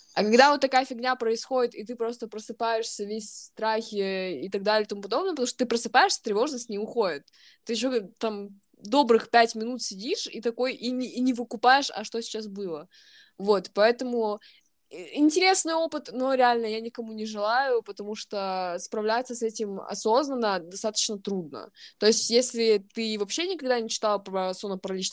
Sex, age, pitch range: female, 20-39, 200-250 Hz